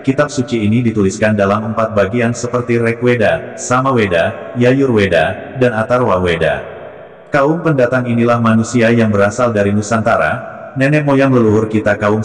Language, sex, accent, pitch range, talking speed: English, male, Indonesian, 105-130 Hz, 125 wpm